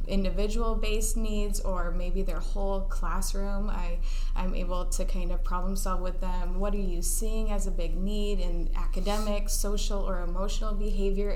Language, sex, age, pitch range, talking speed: English, female, 20-39, 185-205 Hz, 160 wpm